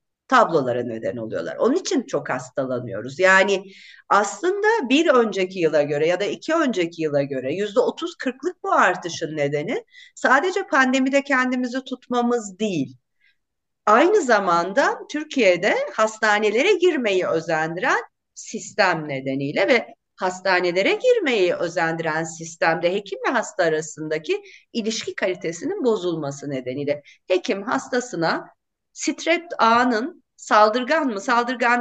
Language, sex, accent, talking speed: Turkish, female, native, 110 wpm